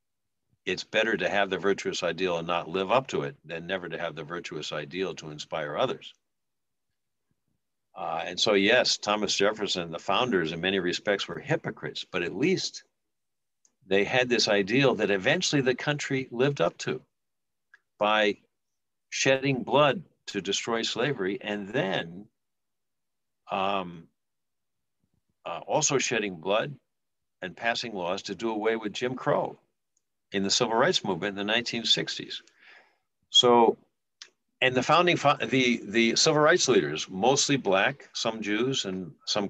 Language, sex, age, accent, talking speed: English, male, 60-79, American, 145 wpm